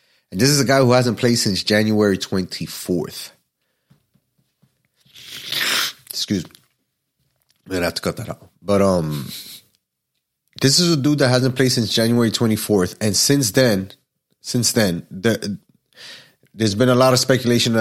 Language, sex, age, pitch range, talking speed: English, male, 30-49, 100-130 Hz, 155 wpm